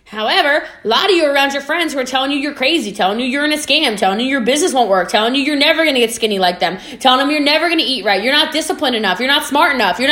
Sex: female